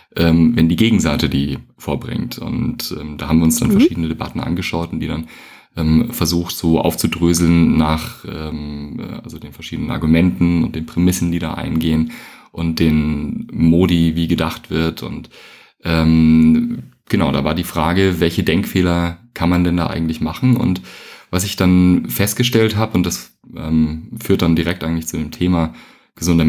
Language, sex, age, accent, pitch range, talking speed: German, male, 30-49, German, 80-90 Hz, 165 wpm